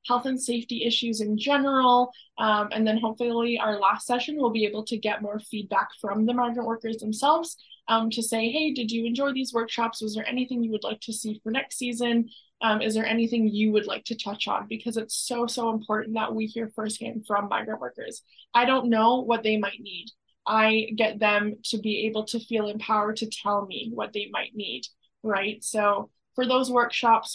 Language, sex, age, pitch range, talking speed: English, female, 20-39, 215-240 Hz, 210 wpm